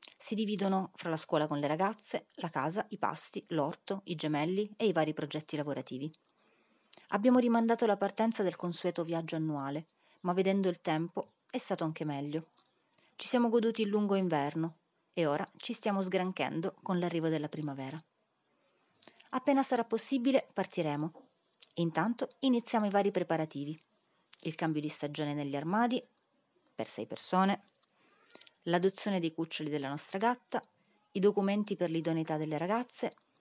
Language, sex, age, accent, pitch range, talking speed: Italian, female, 30-49, native, 155-210 Hz, 145 wpm